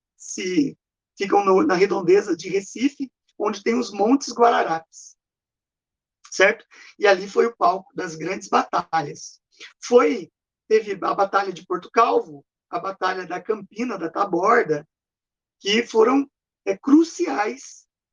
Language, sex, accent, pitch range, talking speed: Portuguese, male, Brazilian, 195-285 Hz, 125 wpm